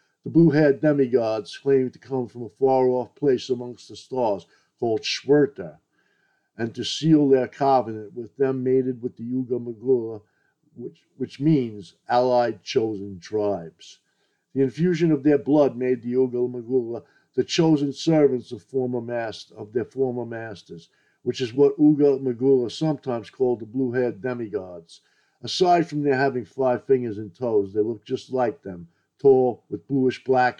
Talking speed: 160 wpm